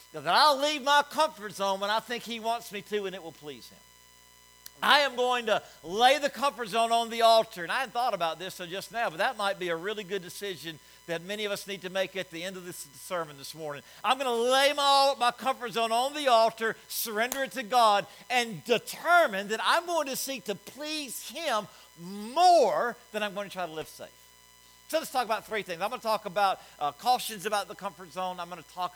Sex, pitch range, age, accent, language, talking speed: male, 180-255 Hz, 50-69, American, English, 235 wpm